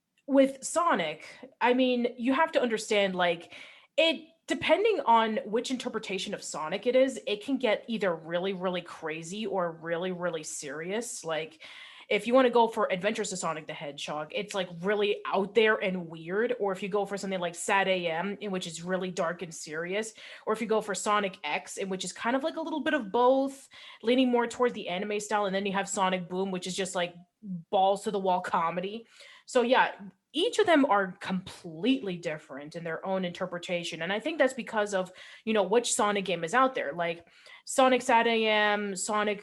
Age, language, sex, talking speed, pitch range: 30-49, English, female, 200 wpm, 180-230 Hz